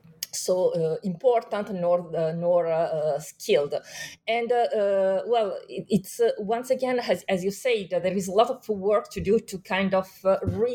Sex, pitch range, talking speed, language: female, 175-230 Hz, 190 wpm, English